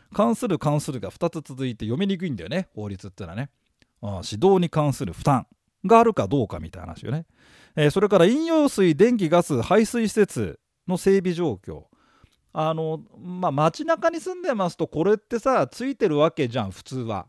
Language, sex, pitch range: Japanese, male, 125-210 Hz